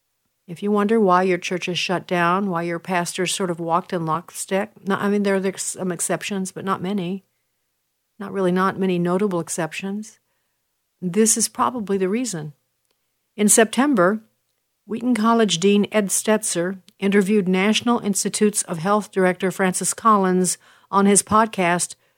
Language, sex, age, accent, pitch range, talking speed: English, female, 50-69, American, 180-205 Hz, 150 wpm